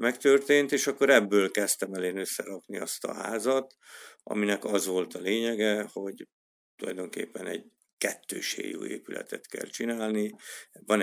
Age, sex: 50-69, male